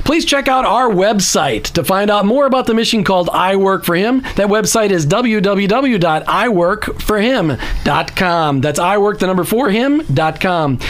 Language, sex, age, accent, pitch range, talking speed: English, male, 40-59, American, 175-225 Hz, 155 wpm